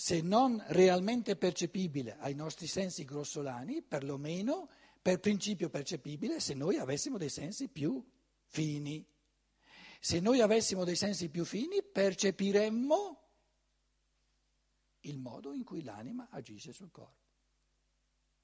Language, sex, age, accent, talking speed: Italian, male, 60-79, native, 115 wpm